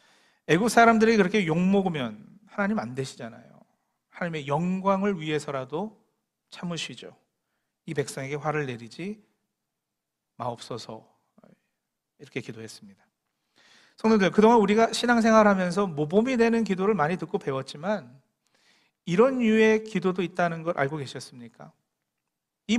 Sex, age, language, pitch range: male, 40-59, Korean, 160-220 Hz